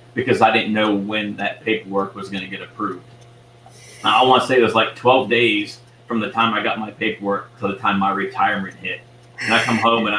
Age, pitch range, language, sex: 30-49, 100-115 Hz, English, male